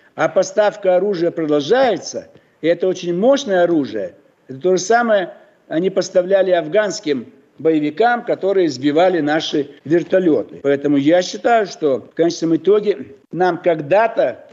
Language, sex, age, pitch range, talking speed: Russian, male, 60-79, 155-235 Hz, 125 wpm